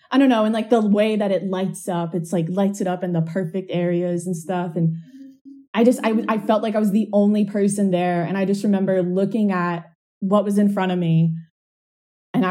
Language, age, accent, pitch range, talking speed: English, 20-39, American, 180-260 Hz, 230 wpm